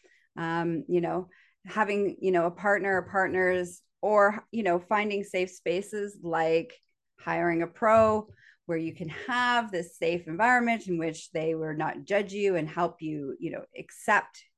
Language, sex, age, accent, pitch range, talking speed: English, female, 30-49, American, 170-200 Hz, 165 wpm